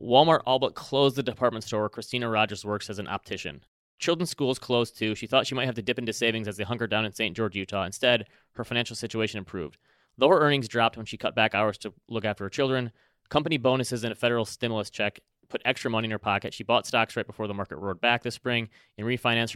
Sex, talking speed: male, 240 wpm